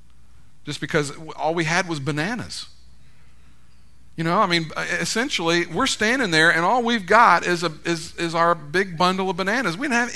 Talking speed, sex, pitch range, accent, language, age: 185 wpm, male, 115-175 Hz, American, English, 50-69